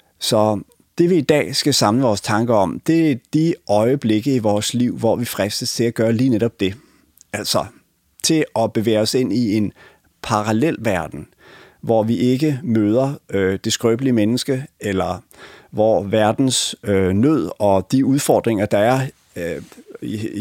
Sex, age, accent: male, 30-49, Danish